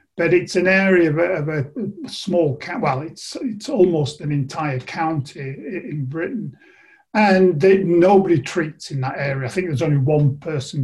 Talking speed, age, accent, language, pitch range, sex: 175 wpm, 50-69, British, English, 145-190 Hz, male